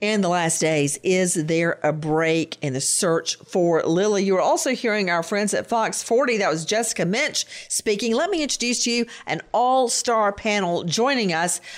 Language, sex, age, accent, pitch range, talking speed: English, female, 50-69, American, 190-255 Hz, 185 wpm